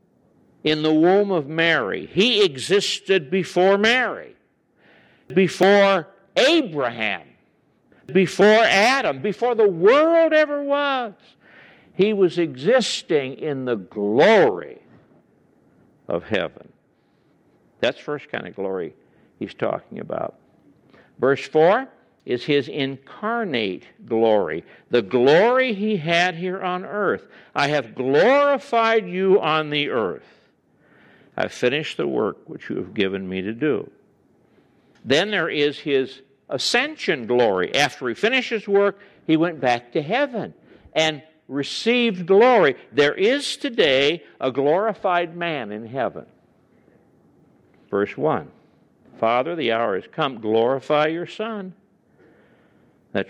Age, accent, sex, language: 60-79, American, male, English